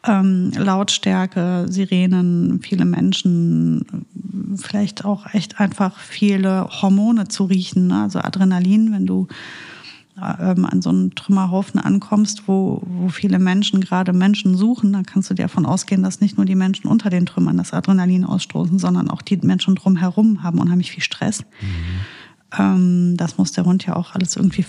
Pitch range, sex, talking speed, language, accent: 175-195 Hz, female, 160 wpm, German, German